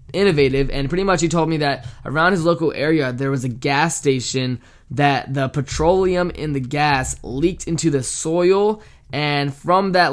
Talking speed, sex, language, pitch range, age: 180 wpm, male, English, 135-160 Hz, 20-39